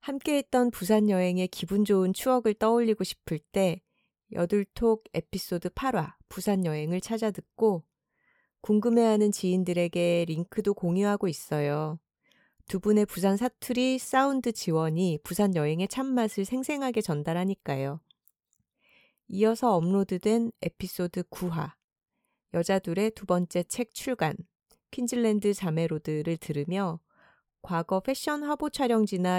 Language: Korean